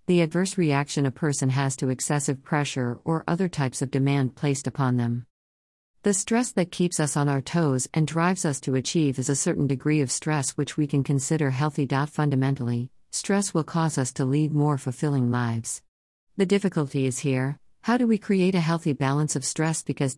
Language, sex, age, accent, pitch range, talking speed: English, female, 50-69, American, 135-155 Hz, 195 wpm